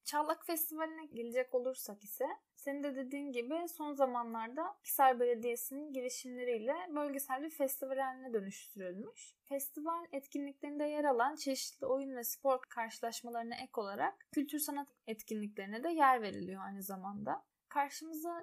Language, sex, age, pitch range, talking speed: Turkish, female, 10-29, 230-290 Hz, 125 wpm